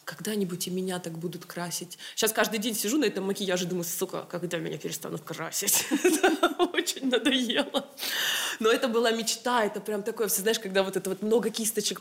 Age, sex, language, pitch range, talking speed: 20-39, female, Russian, 195-270 Hz, 180 wpm